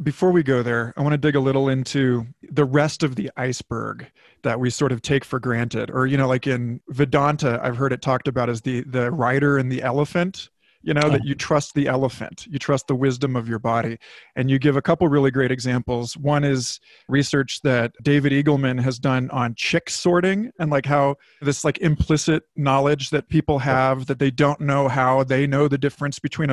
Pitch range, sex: 125-145 Hz, male